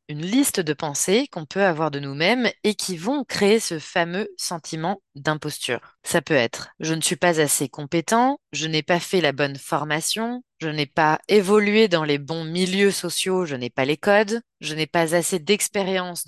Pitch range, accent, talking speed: 155-210 Hz, French, 190 wpm